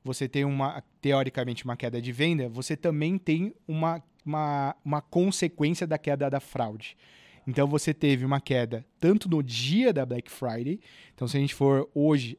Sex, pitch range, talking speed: male, 130-165 Hz, 175 wpm